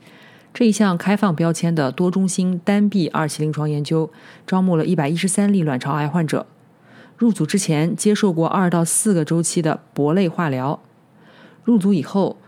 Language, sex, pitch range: Chinese, female, 150-195 Hz